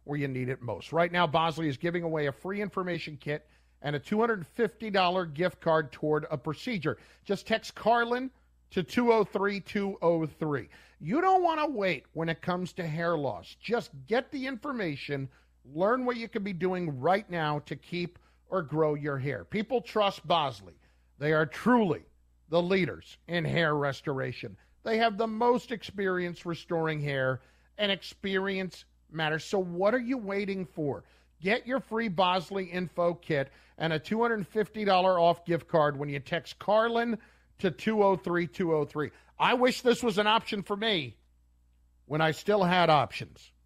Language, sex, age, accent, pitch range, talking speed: English, male, 50-69, American, 145-205 Hz, 160 wpm